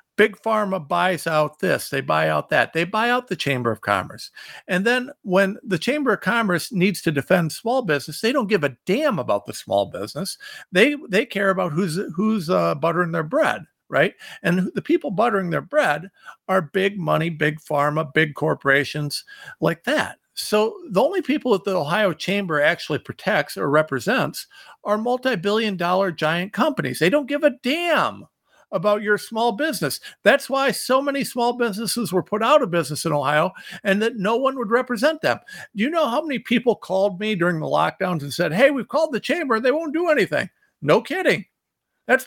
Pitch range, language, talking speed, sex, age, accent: 170-245 Hz, English, 190 wpm, male, 50-69, American